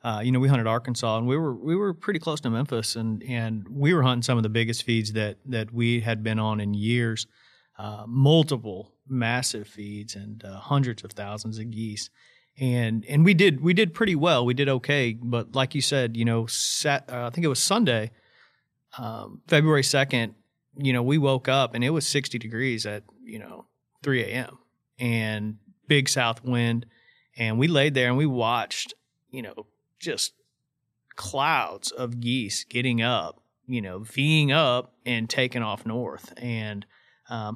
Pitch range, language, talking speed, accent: 115-135 Hz, English, 185 wpm, American